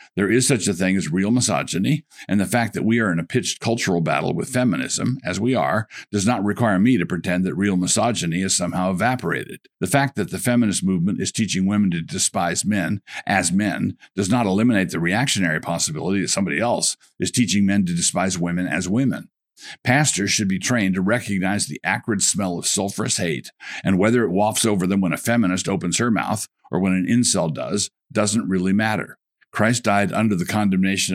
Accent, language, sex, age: American, English, male, 50-69